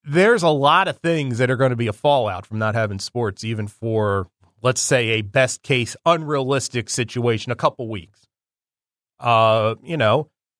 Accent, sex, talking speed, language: American, male, 175 wpm, English